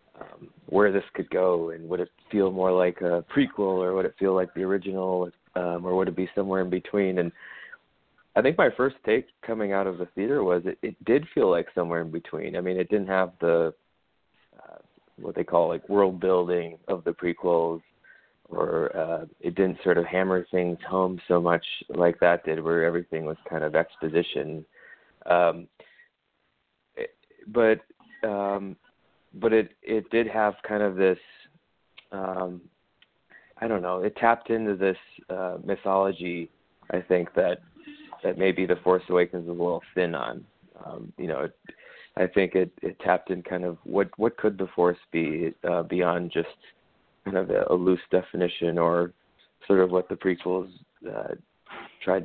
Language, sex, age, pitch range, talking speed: English, male, 30-49, 90-95 Hz, 175 wpm